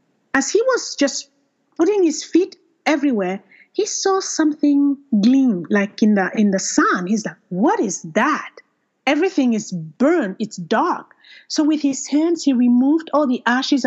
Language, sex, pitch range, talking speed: English, female, 210-300 Hz, 160 wpm